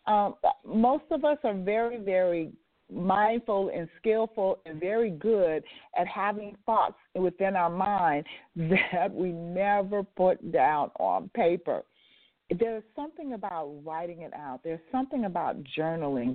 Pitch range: 175-235 Hz